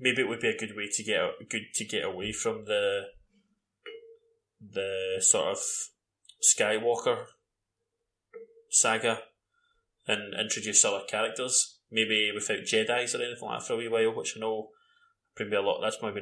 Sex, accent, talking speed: male, British, 160 wpm